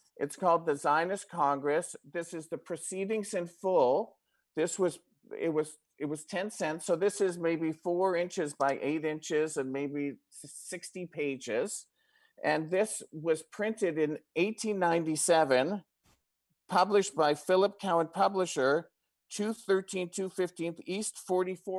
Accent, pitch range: American, 150-185 Hz